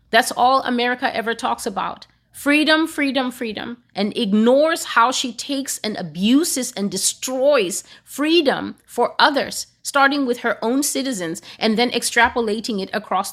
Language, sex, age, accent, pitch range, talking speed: English, female, 30-49, American, 210-265 Hz, 140 wpm